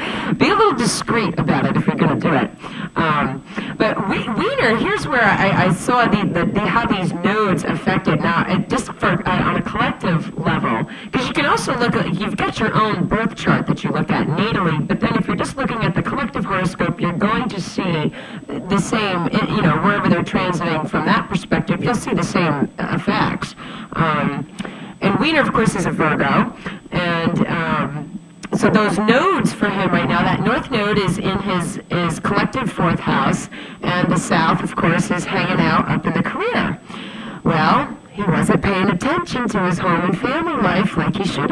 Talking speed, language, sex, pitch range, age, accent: 185 wpm, English, female, 180-220 Hz, 40-59, American